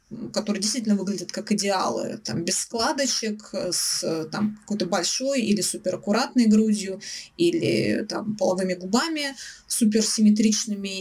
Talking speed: 110 wpm